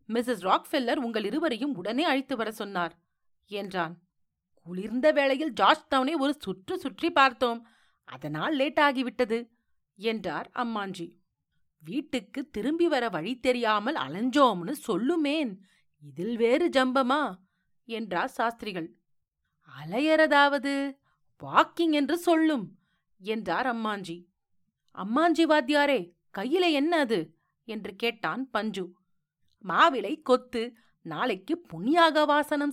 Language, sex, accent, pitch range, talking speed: Tamil, female, native, 185-285 Hz, 95 wpm